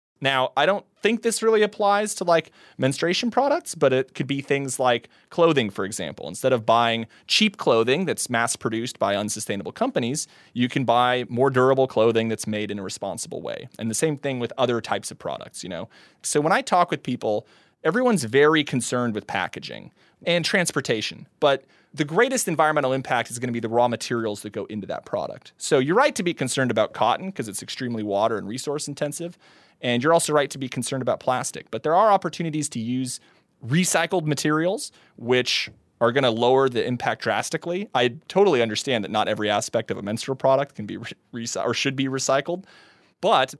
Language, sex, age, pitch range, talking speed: English, male, 30-49, 115-160 Hz, 195 wpm